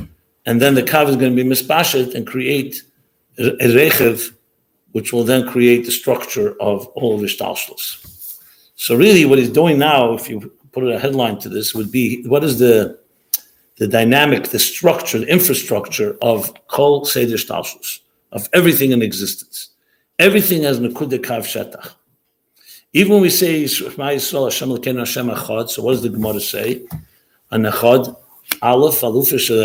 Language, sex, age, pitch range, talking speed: English, male, 60-79, 115-140 Hz, 140 wpm